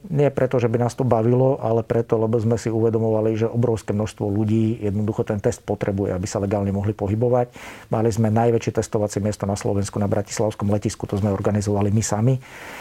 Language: Slovak